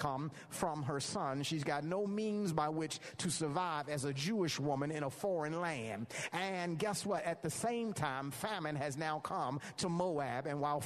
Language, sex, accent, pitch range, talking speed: English, male, American, 155-210 Hz, 195 wpm